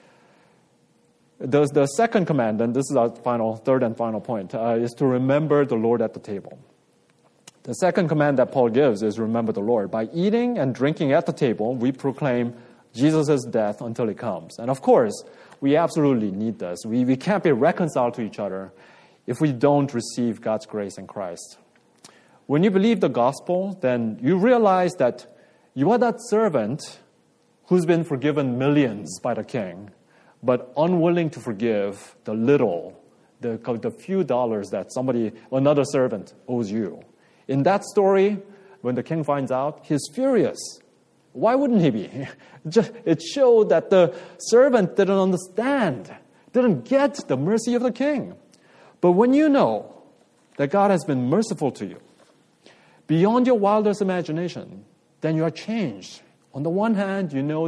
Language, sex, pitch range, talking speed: English, male, 120-195 Hz, 165 wpm